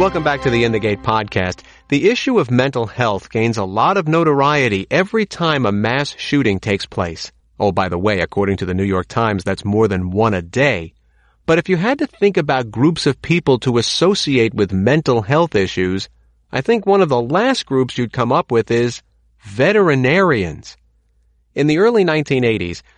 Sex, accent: male, American